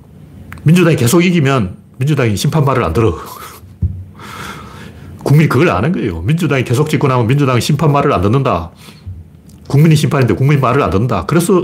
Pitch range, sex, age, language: 105-155 Hz, male, 40-59, Korean